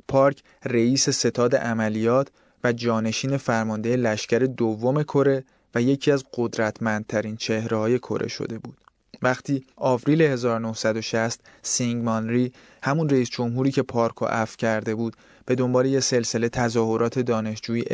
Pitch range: 110-135 Hz